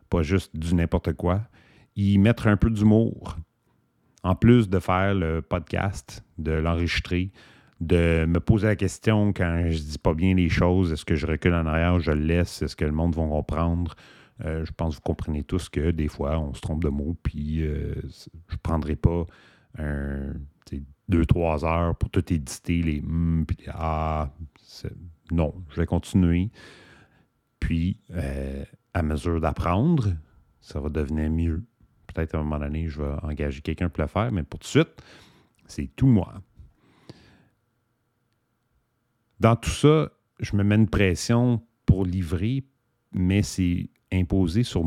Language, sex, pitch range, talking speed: English, male, 80-105 Hz, 165 wpm